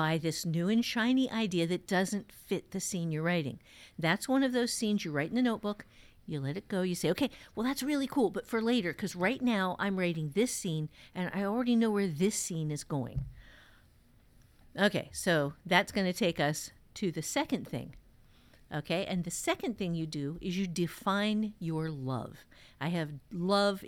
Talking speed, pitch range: 195 wpm, 155-220 Hz